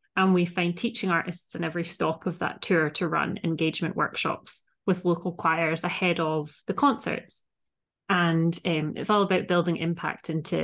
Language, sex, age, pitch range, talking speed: English, female, 30-49, 170-200 Hz, 170 wpm